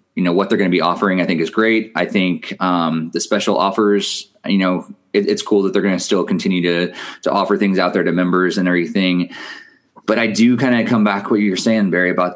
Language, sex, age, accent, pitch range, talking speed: English, male, 20-39, American, 90-110 Hz, 245 wpm